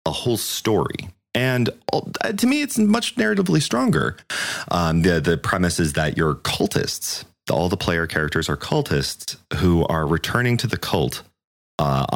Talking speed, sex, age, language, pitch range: 155 wpm, male, 30-49, English, 65-85 Hz